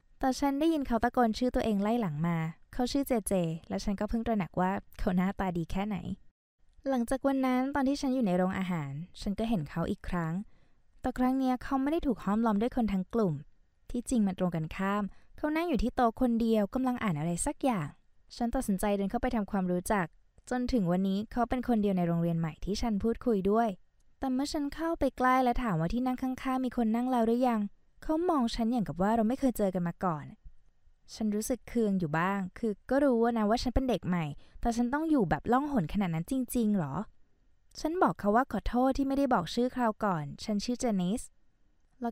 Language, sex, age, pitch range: Thai, female, 20-39, 185-255 Hz